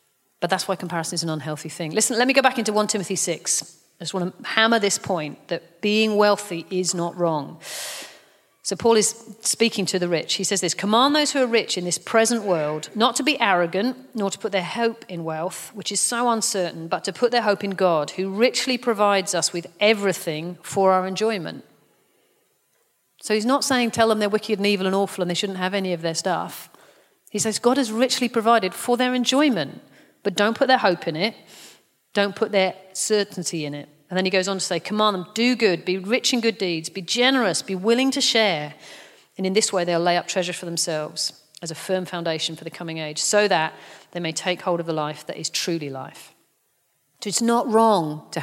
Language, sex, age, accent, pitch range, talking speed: English, female, 40-59, British, 175-225 Hz, 220 wpm